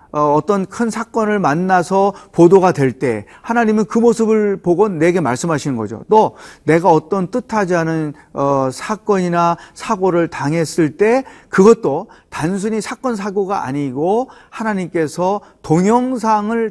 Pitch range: 150-205 Hz